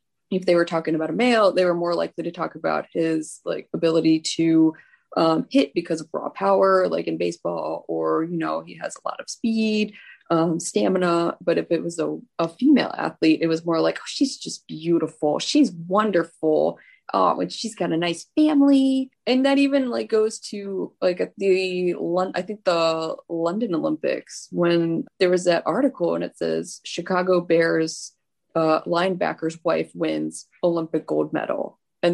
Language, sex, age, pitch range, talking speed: English, female, 20-39, 160-195 Hz, 175 wpm